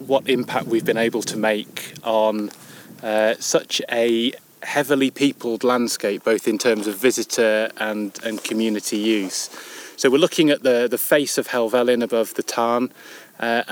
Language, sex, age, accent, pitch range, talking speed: English, male, 30-49, British, 110-135 Hz, 160 wpm